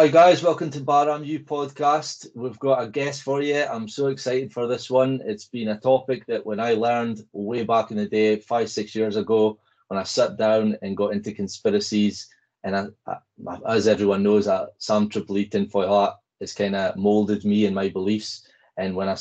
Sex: male